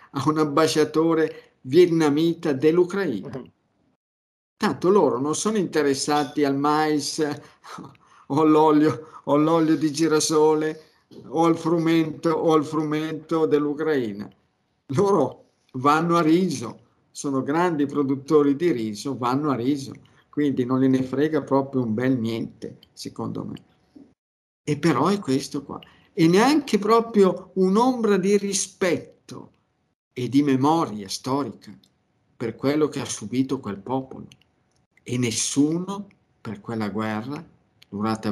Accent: native